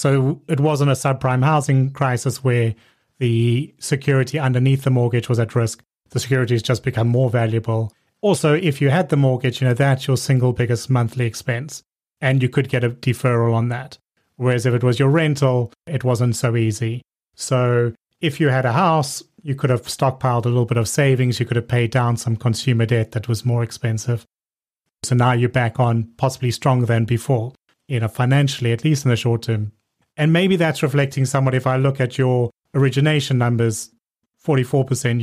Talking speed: 190 wpm